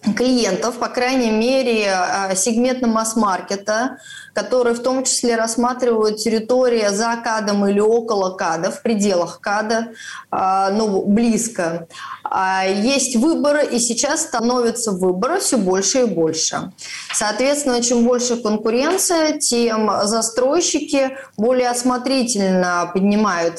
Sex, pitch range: female, 205-250 Hz